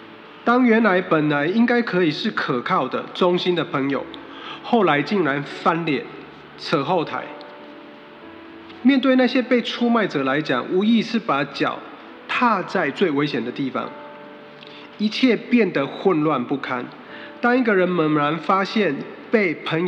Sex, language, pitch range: male, Chinese, 145-215 Hz